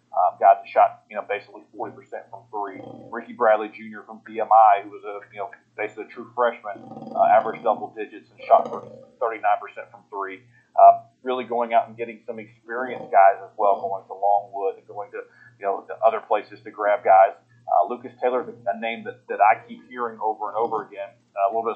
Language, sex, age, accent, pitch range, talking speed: English, male, 40-59, American, 105-125 Hz, 205 wpm